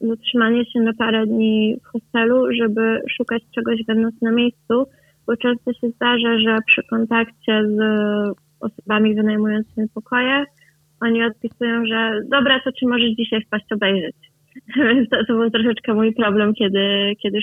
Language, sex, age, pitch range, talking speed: Polish, female, 20-39, 210-230 Hz, 145 wpm